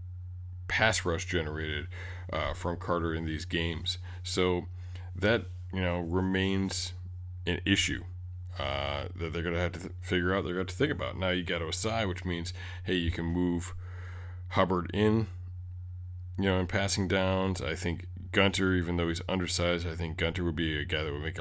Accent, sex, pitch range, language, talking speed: American, male, 85-90 Hz, English, 190 wpm